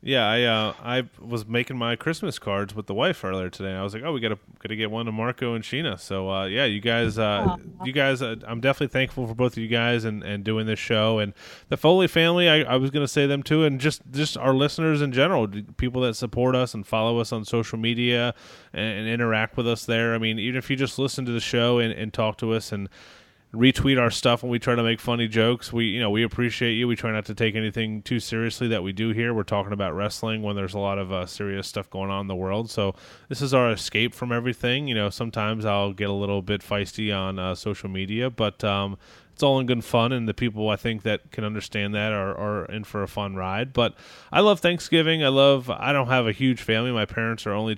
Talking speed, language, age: 255 wpm, English, 30-49